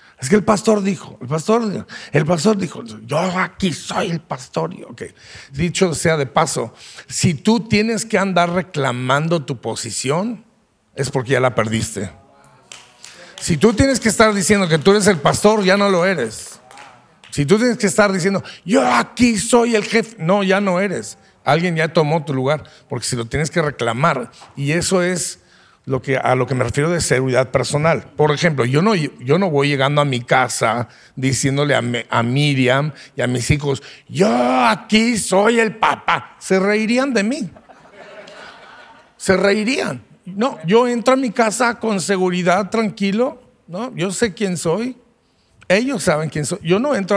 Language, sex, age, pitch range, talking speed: English, male, 50-69, 140-210 Hz, 175 wpm